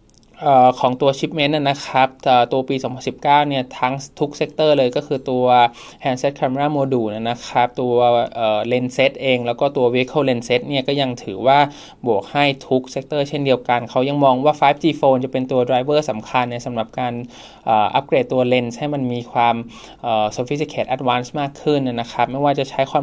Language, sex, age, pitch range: Thai, male, 20-39, 120-135 Hz